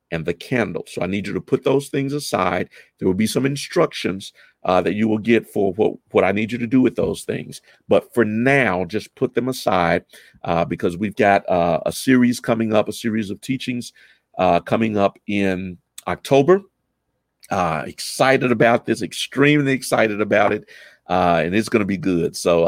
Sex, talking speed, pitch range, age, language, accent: male, 200 wpm, 100-130 Hz, 50-69, English, American